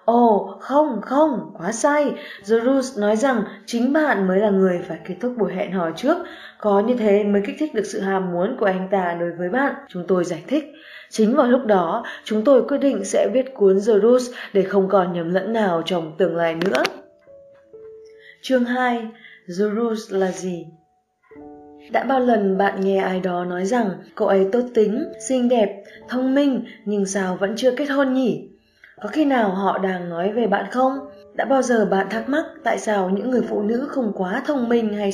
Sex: female